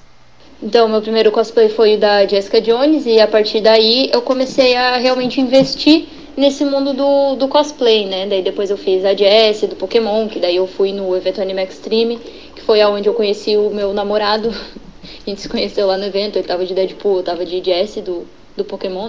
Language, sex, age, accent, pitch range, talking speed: Portuguese, female, 10-29, Brazilian, 215-265 Hz, 210 wpm